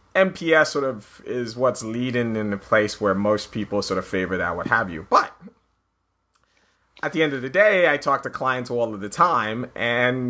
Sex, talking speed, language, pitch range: male, 205 wpm, English, 110-145 Hz